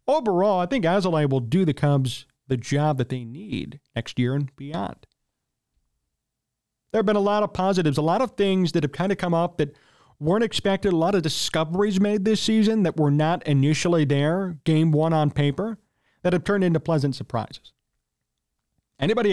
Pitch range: 140-195 Hz